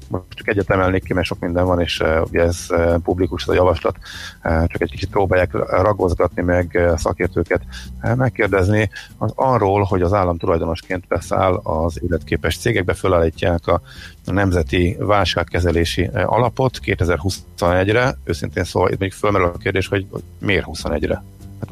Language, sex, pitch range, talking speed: Hungarian, male, 85-105 Hz, 150 wpm